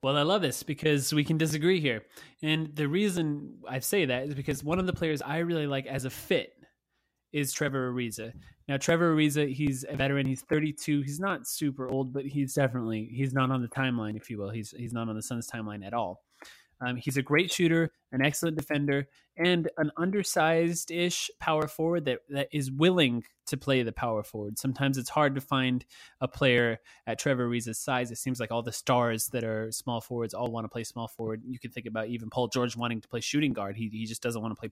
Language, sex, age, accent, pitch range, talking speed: English, male, 20-39, American, 120-150 Hz, 225 wpm